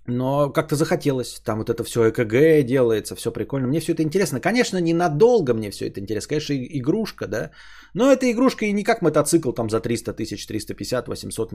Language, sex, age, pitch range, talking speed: Bulgarian, male, 20-39, 115-165 Hz, 180 wpm